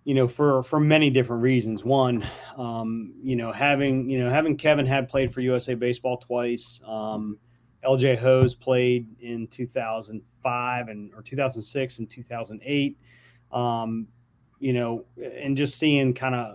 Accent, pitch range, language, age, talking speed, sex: American, 120-135 Hz, English, 30-49, 145 wpm, male